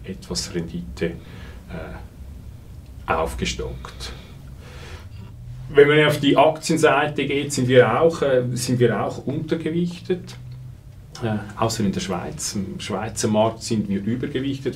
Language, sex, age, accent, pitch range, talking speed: German, male, 40-59, Austrian, 100-120 Hz, 110 wpm